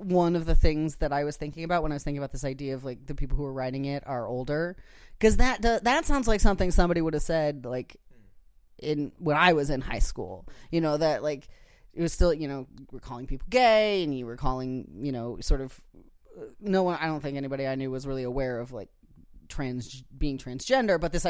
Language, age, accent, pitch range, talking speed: English, 30-49, American, 135-200 Hz, 240 wpm